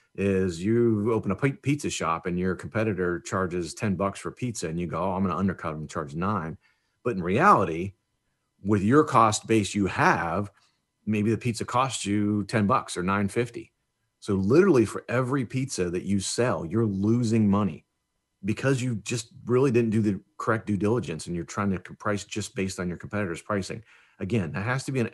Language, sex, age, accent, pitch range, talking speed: English, male, 40-59, American, 95-115 Hz, 195 wpm